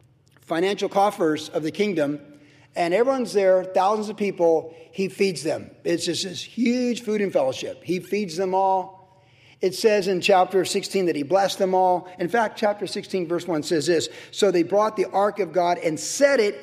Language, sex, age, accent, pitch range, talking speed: English, male, 50-69, American, 140-190 Hz, 190 wpm